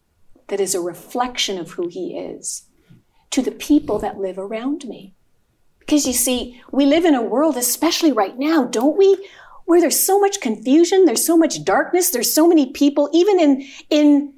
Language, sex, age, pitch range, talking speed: English, female, 50-69, 205-305 Hz, 185 wpm